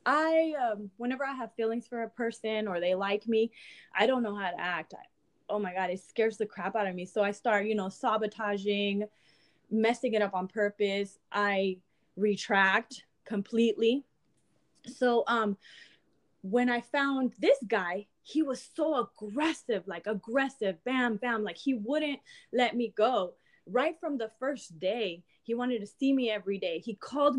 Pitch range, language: 205-255 Hz, English